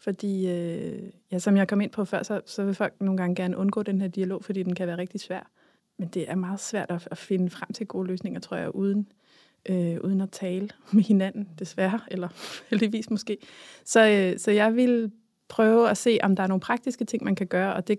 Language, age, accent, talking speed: Danish, 20-39, native, 230 wpm